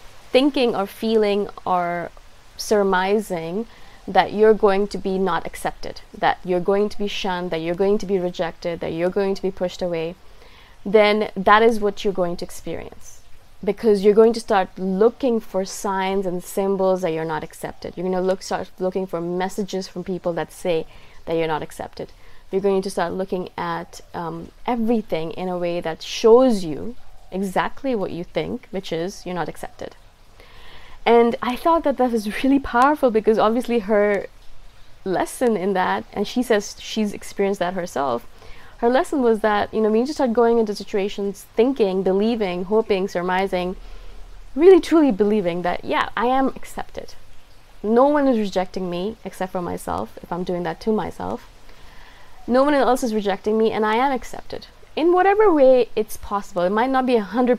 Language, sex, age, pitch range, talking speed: English, female, 20-39, 185-230 Hz, 185 wpm